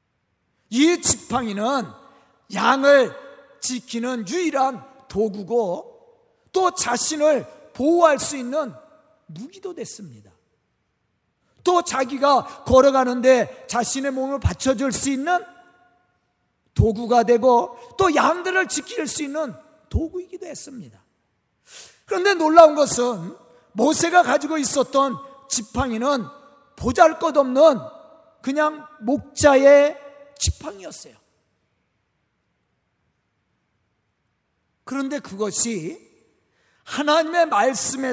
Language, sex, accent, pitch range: Korean, male, native, 240-320 Hz